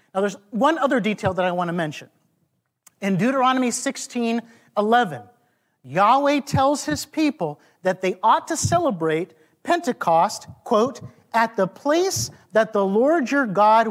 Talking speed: 140 wpm